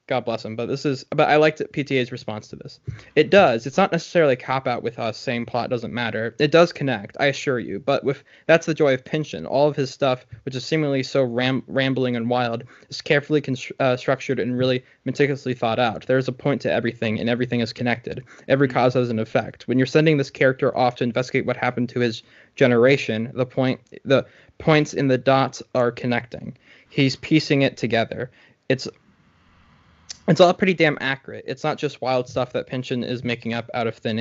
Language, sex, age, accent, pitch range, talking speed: English, male, 20-39, American, 120-145 Hz, 215 wpm